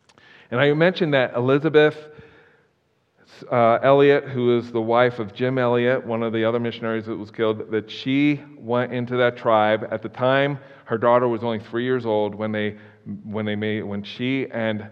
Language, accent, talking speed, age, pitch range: English, American, 185 wpm, 40-59, 105-120 Hz